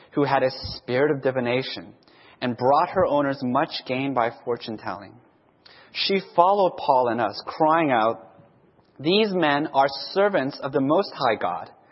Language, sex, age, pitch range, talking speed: English, male, 30-49, 125-165 Hz, 155 wpm